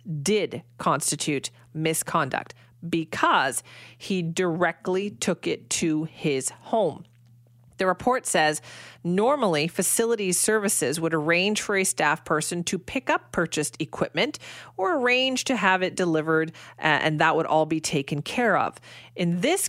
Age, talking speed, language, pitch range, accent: 40-59, 135 wpm, English, 155-210 Hz, American